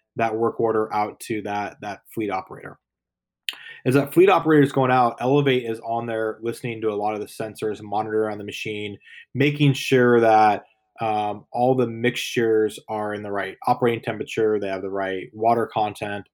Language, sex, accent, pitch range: English, male, American, 105-125 Hz